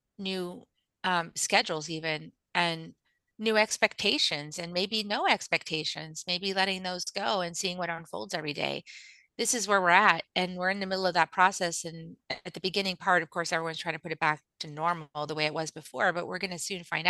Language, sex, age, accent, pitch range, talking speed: English, female, 30-49, American, 170-200 Hz, 210 wpm